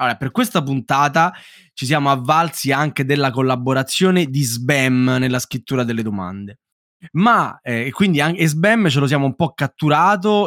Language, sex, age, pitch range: Italian, male, 20-39, 125-185 Hz